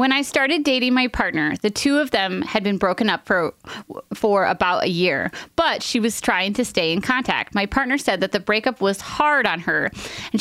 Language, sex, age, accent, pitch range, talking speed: English, female, 20-39, American, 190-250 Hz, 220 wpm